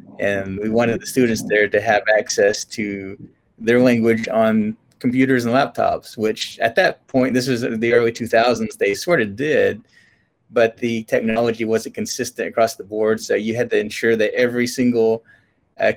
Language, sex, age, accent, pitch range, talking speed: English, male, 30-49, American, 110-125 Hz, 175 wpm